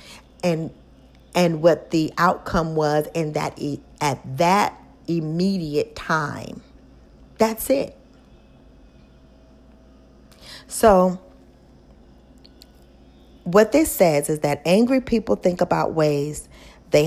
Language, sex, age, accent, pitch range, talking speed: English, female, 40-59, American, 140-175 Hz, 90 wpm